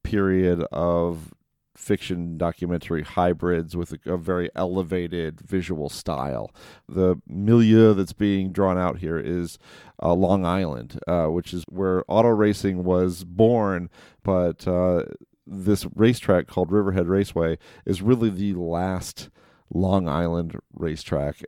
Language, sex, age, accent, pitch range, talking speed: English, male, 40-59, American, 85-100 Hz, 125 wpm